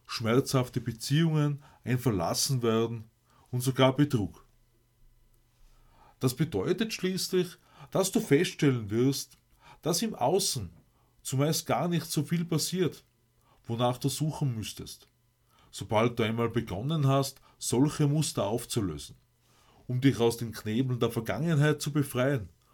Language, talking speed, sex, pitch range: German, 120 wpm, male, 120-145 Hz